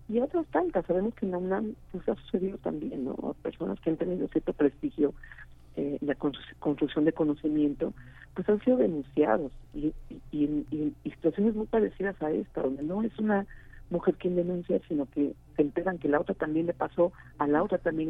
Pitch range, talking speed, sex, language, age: 140-175 Hz, 195 wpm, female, Spanish, 50-69